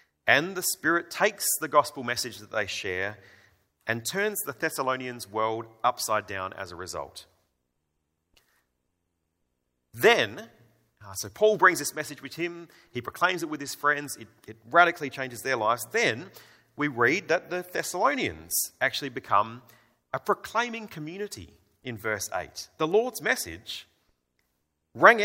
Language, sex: English, male